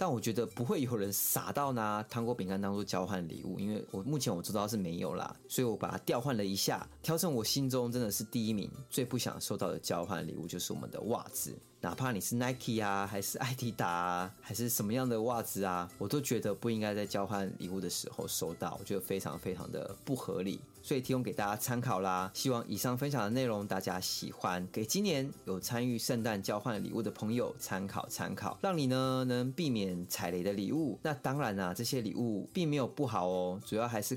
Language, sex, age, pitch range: Chinese, male, 20-39, 100-125 Hz